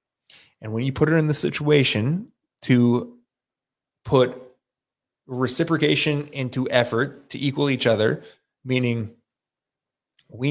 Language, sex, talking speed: English, male, 110 wpm